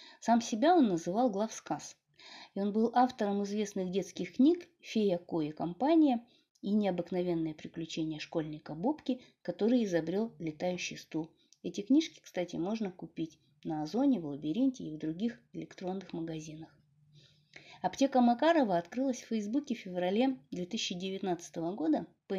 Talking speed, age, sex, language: 130 wpm, 30-49, female, Russian